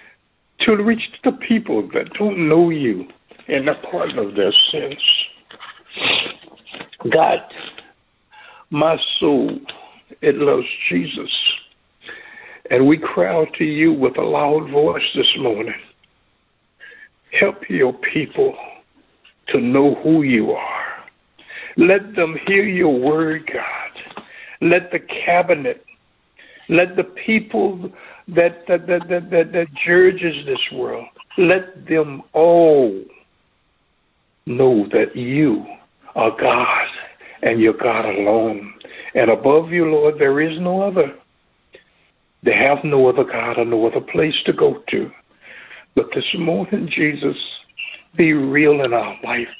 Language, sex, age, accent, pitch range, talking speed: English, male, 60-79, American, 145-220 Hz, 120 wpm